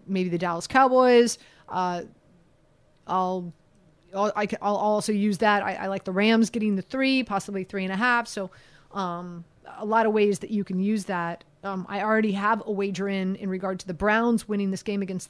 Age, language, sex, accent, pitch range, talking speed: 30-49, English, female, American, 185-245 Hz, 200 wpm